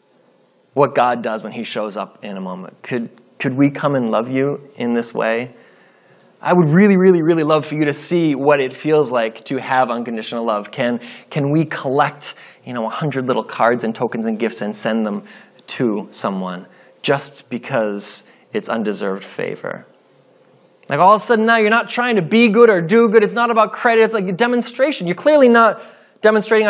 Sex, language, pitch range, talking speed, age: male, English, 120-175 Hz, 200 wpm, 20-39